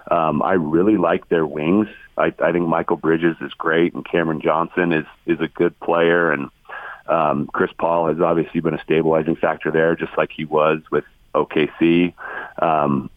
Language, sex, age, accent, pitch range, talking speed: English, male, 40-59, American, 80-95 Hz, 180 wpm